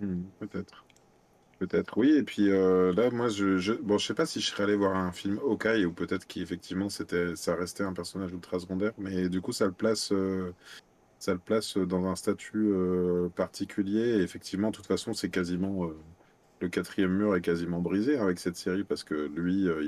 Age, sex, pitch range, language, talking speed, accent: 30-49, male, 85-100 Hz, French, 210 wpm, French